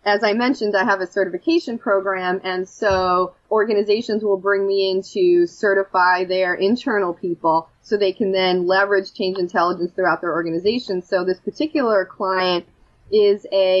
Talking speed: 155 wpm